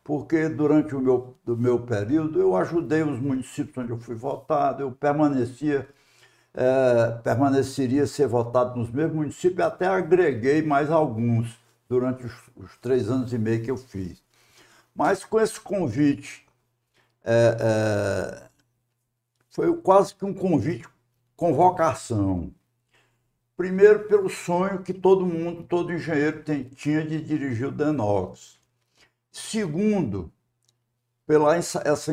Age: 60-79